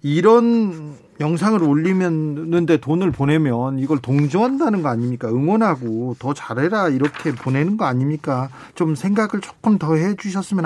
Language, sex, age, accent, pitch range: Korean, male, 40-59, native, 140-200 Hz